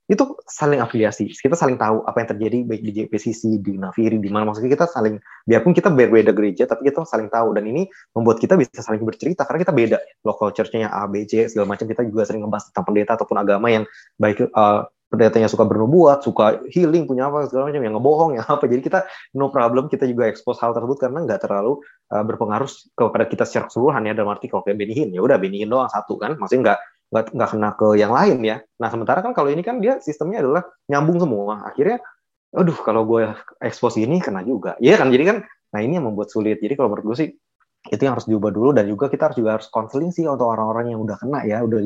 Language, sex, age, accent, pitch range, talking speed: Indonesian, male, 20-39, native, 110-135 Hz, 230 wpm